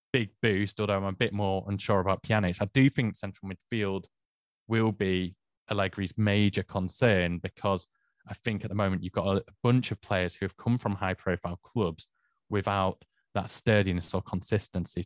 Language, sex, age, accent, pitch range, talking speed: English, male, 20-39, British, 95-115 Hz, 175 wpm